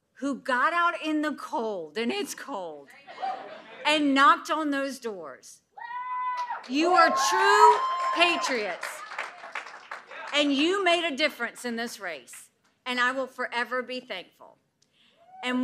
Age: 50-69